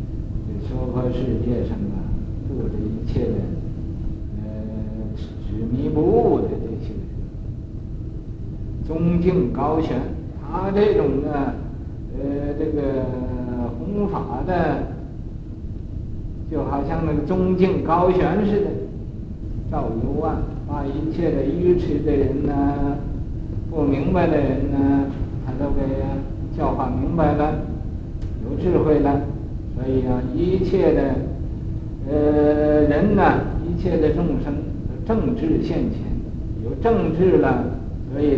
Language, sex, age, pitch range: Chinese, male, 60-79, 110-145 Hz